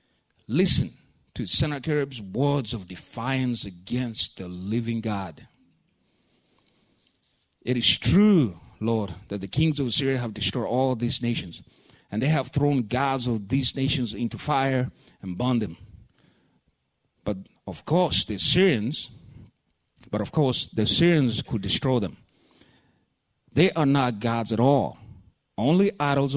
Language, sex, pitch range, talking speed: English, male, 105-135 Hz, 130 wpm